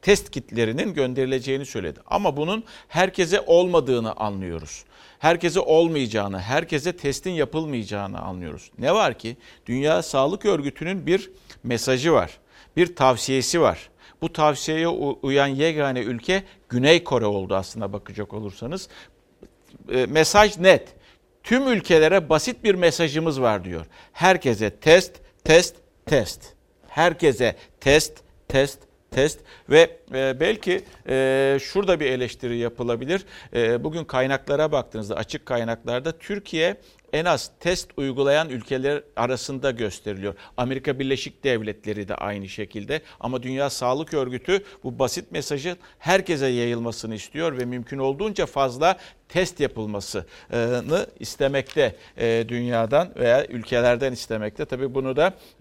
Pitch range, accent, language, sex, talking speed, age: 120-160 Hz, native, Turkish, male, 115 wpm, 60-79